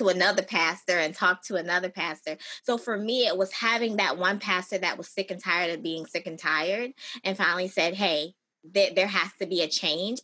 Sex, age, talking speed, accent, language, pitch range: female, 20-39, 215 wpm, American, English, 180-215 Hz